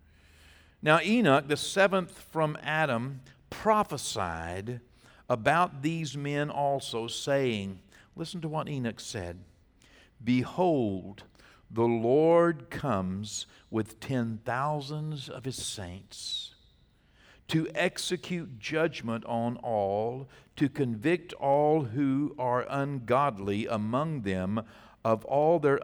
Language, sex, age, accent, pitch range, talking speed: English, male, 60-79, American, 115-160 Hz, 100 wpm